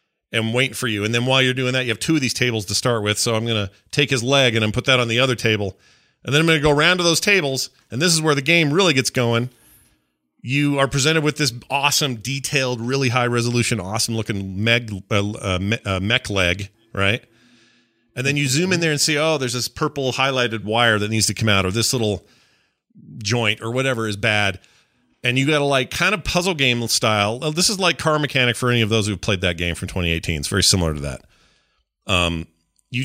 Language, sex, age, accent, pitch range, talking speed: English, male, 40-59, American, 105-140 Hz, 230 wpm